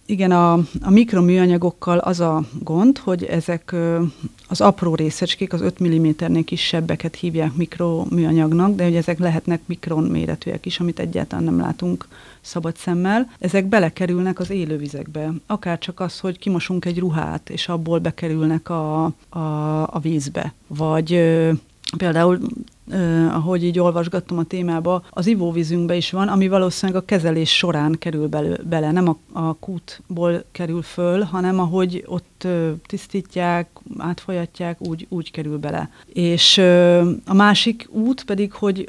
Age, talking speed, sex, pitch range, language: 30-49, 135 wpm, female, 160-185 Hz, Hungarian